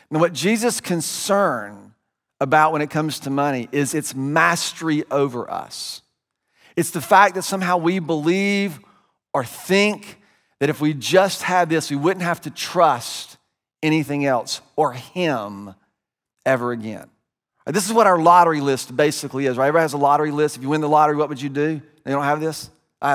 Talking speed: 180 wpm